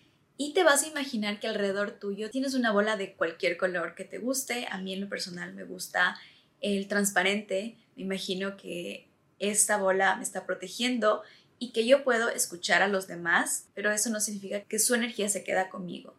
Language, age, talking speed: Spanish, 20-39, 195 wpm